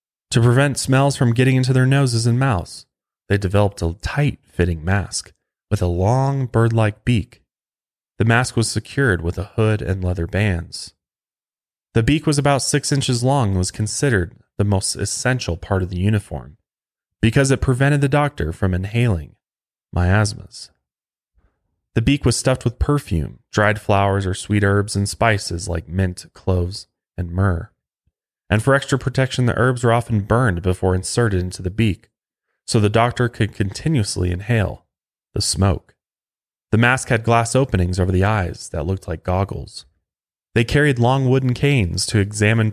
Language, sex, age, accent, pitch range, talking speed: English, male, 30-49, American, 90-120 Hz, 160 wpm